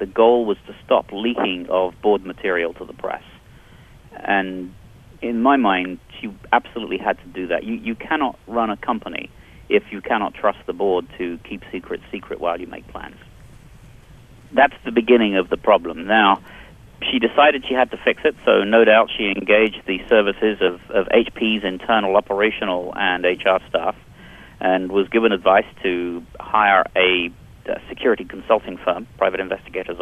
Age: 40-59